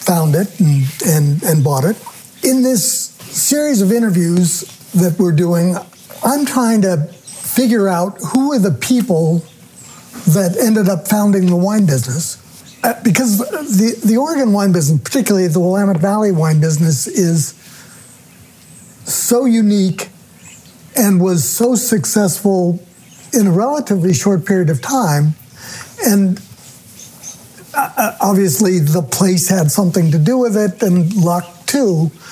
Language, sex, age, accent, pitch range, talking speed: English, male, 60-79, American, 165-210 Hz, 130 wpm